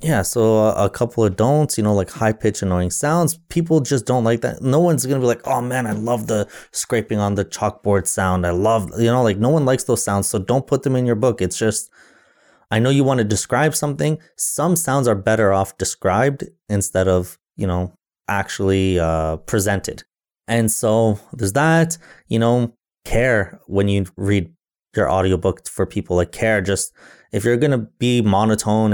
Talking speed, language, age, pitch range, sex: 200 wpm, English, 20-39, 95-115 Hz, male